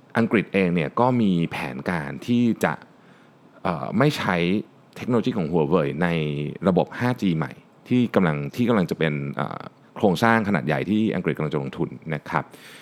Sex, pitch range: male, 80-115 Hz